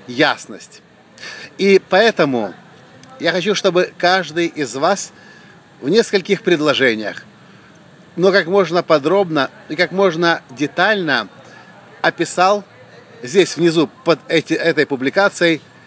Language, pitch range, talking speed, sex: English, 155-180 Hz, 100 wpm, male